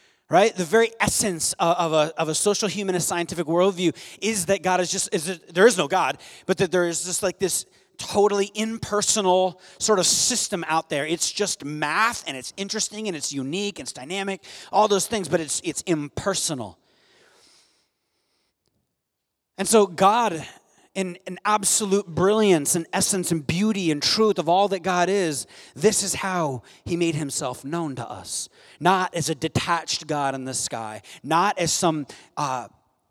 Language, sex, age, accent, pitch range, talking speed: English, male, 30-49, American, 135-195 Hz, 175 wpm